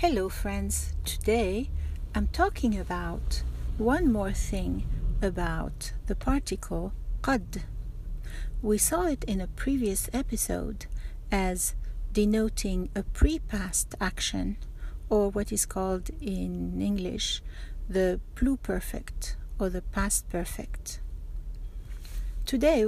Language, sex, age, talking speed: Arabic, female, 60-79, 100 wpm